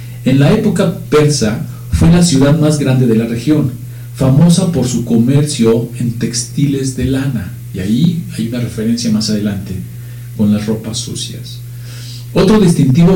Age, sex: 50-69, male